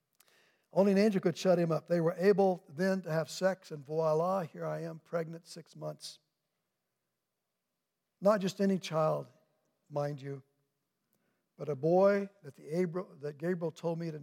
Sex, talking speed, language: male, 150 wpm, English